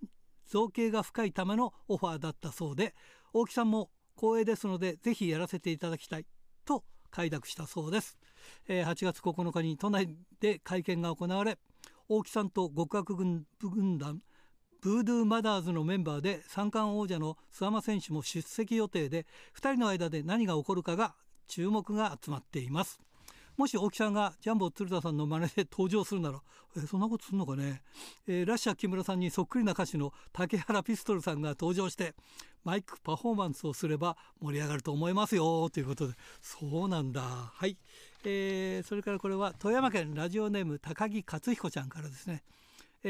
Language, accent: Japanese, native